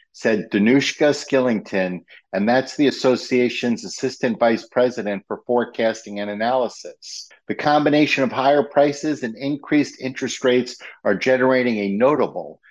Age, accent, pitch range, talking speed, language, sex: 50-69, American, 110-135 Hz, 125 wpm, English, male